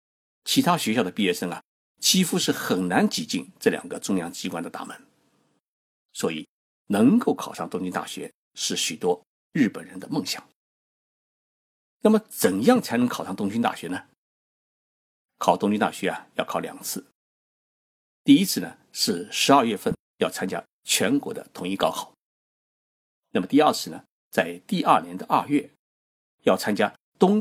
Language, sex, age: Chinese, male, 50-69